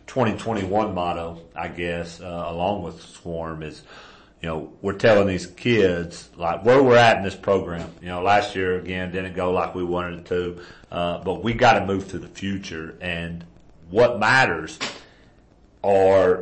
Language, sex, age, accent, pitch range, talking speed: English, male, 40-59, American, 85-105 Hz, 170 wpm